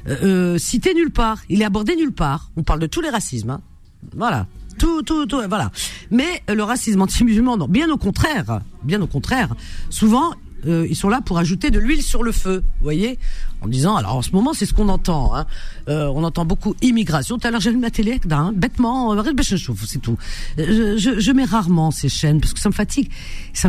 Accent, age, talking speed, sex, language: French, 50-69, 220 wpm, female, French